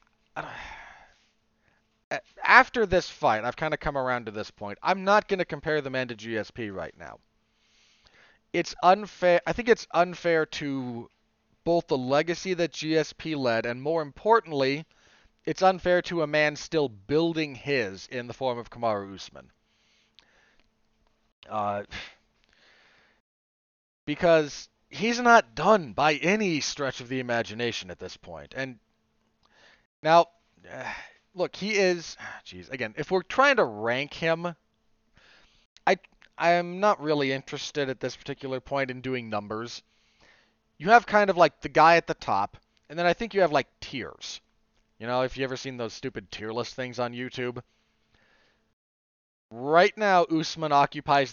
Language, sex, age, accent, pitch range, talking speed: English, male, 30-49, American, 125-170 Hz, 150 wpm